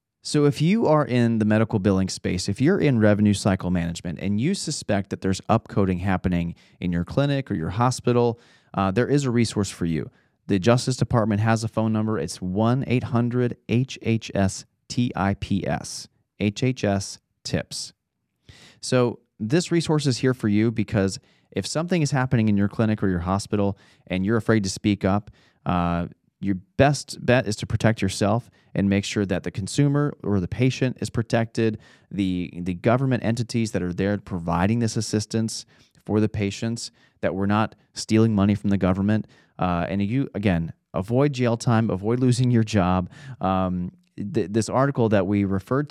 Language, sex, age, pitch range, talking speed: English, male, 30-49, 95-120 Hz, 165 wpm